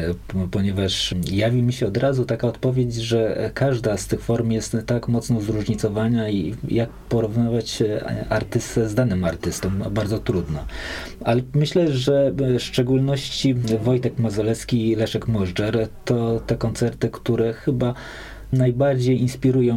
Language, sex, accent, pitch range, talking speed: Polish, male, native, 105-125 Hz, 130 wpm